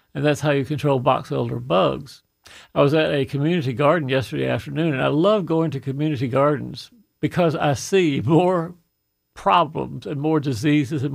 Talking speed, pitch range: 170 wpm, 135-160 Hz